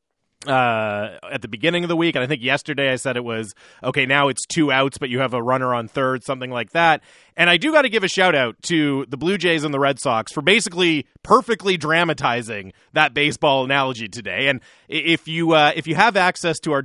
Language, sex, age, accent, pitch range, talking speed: English, male, 30-49, American, 130-175 Hz, 230 wpm